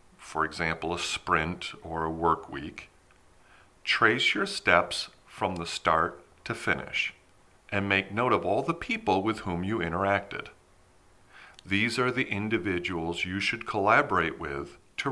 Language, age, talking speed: English, 40-59, 145 wpm